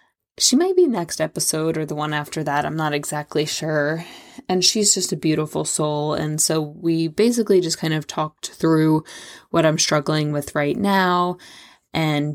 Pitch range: 155-195 Hz